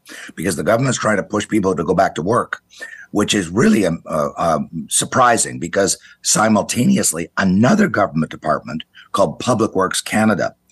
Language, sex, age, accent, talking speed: English, male, 50-69, American, 150 wpm